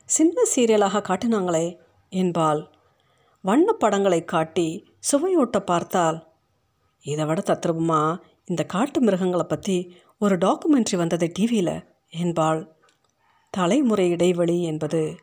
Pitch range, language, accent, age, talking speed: 170-240 Hz, Tamil, native, 50-69, 90 wpm